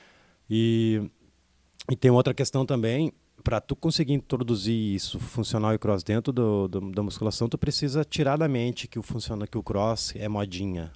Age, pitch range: 20-39, 105-135 Hz